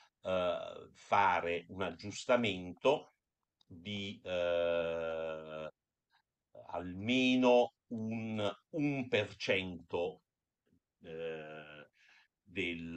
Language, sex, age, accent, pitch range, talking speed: Italian, male, 50-69, native, 85-125 Hz, 60 wpm